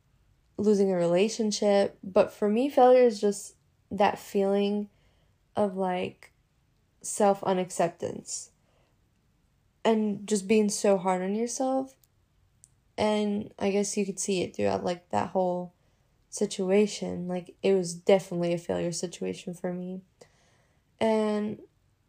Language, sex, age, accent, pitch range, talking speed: English, female, 10-29, American, 180-220 Hz, 115 wpm